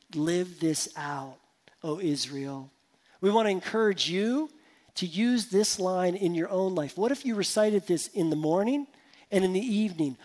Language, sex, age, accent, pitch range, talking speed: English, male, 40-59, American, 165-210 Hz, 175 wpm